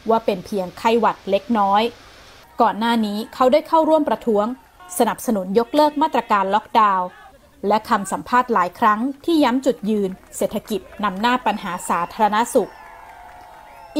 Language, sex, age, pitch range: Thai, female, 20-39, 200-245 Hz